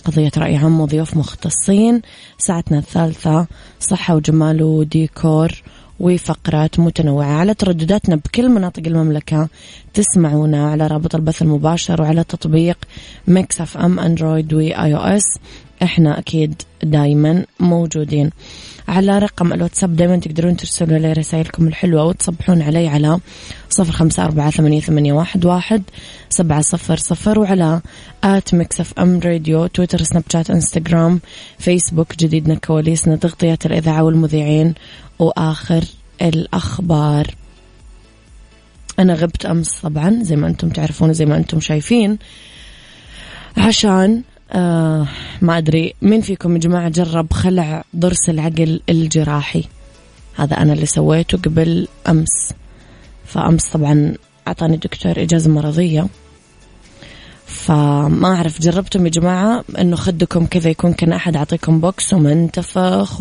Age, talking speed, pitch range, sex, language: 20-39, 115 wpm, 155-175 Hz, female, Arabic